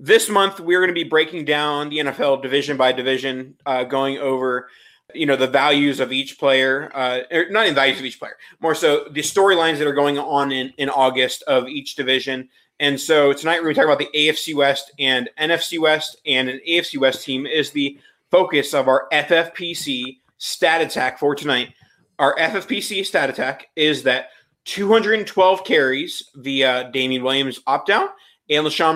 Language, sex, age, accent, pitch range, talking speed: English, male, 20-39, American, 135-165 Hz, 180 wpm